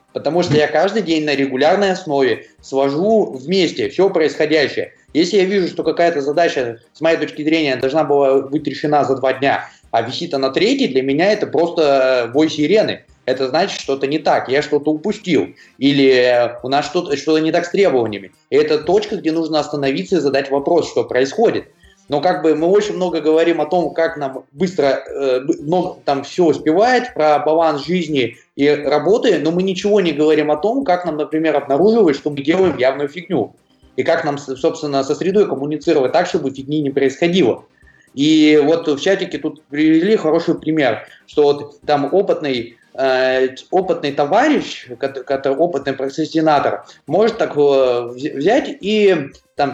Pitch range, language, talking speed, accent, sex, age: 140-175 Hz, Russian, 170 wpm, native, male, 20-39